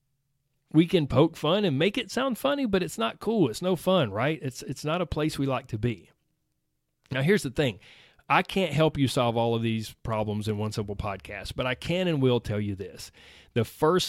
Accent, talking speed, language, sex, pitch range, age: American, 225 wpm, English, male, 110-155 Hz, 40-59